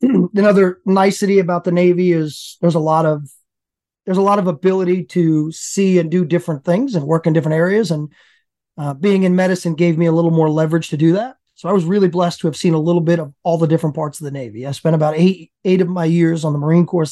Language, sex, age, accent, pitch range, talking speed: English, male, 30-49, American, 155-180 Hz, 250 wpm